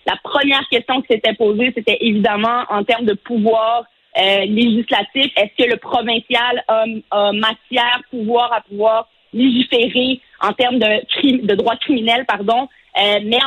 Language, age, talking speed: French, 30-49, 150 wpm